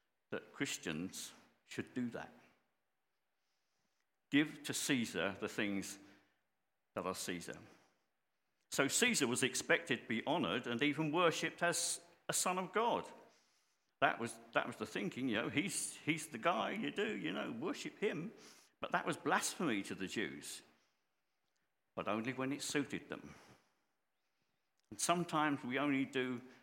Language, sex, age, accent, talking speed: English, male, 50-69, British, 145 wpm